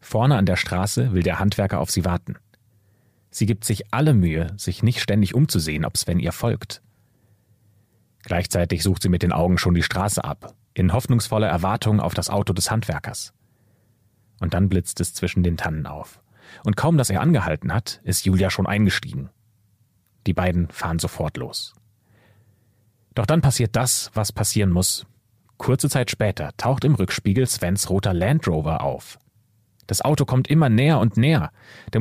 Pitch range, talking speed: 95-120 Hz, 170 wpm